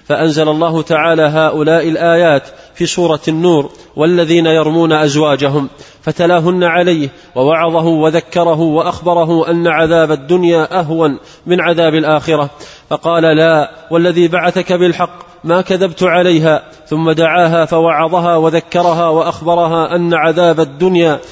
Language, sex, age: Arabic, male, 20-39